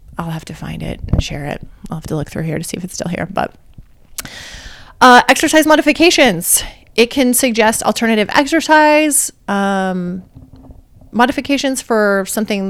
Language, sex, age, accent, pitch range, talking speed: English, female, 30-49, American, 185-235 Hz, 155 wpm